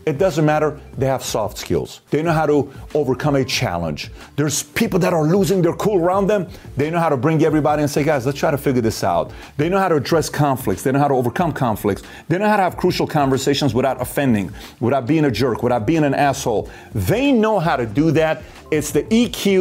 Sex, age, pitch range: male, 40-59, 130-165 Hz